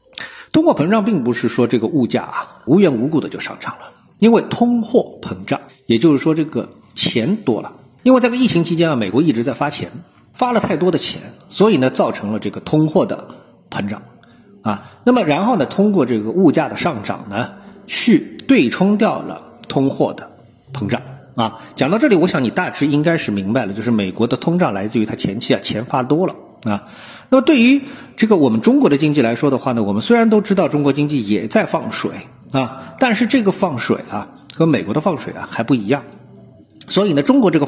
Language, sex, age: Chinese, male, 50-69